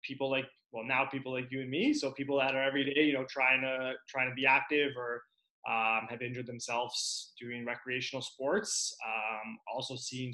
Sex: male